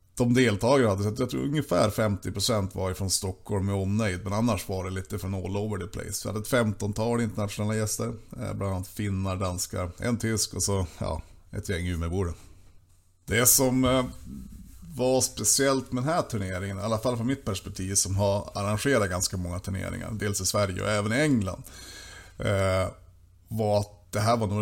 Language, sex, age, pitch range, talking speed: Swedish, male, 30-49, 95-110 Hz, 175 wpm